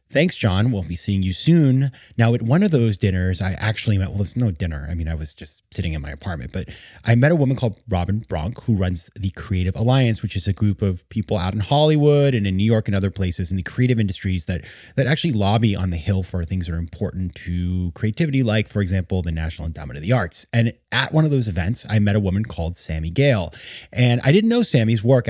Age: 30-49